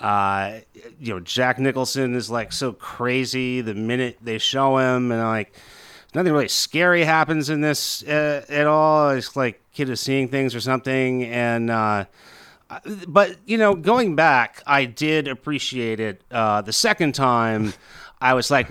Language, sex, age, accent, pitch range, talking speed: English, male, 30-49, American, 120-155 Hz, 165 wpm